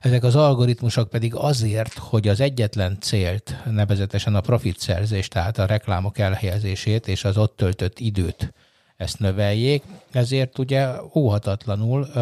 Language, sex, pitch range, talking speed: Hungarian, male, 100-125 Hz, 135 wpm